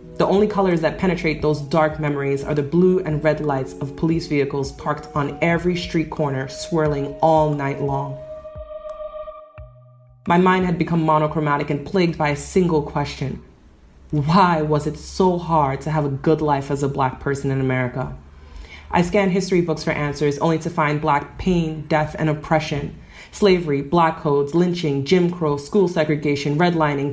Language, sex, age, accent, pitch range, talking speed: English, female, 30-49, American, 140-165 Hz, 170 wpm